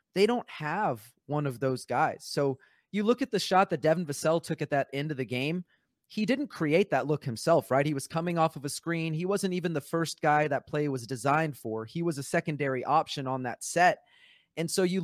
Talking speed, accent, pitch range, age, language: 235 wpm, American, 140-175 Hz, 30-49, English